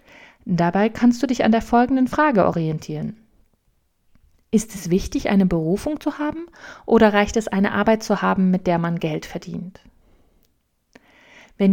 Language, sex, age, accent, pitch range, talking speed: German, female, 30-49, German, 175-240 Hz, 150 wpm